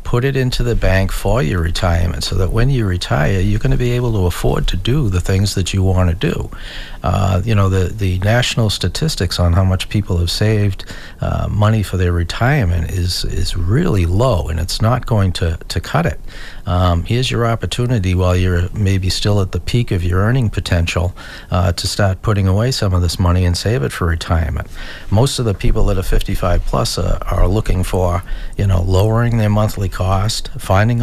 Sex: male